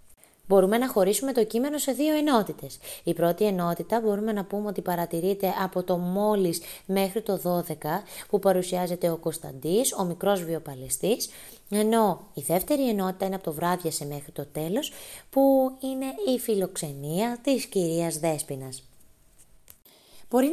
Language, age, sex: Greek, 20-39, female